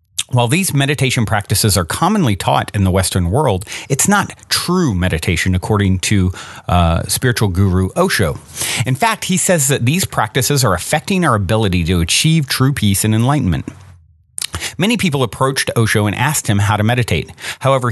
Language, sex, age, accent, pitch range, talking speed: English, male, 40-59, American, 100-145 Hz, 165 wpm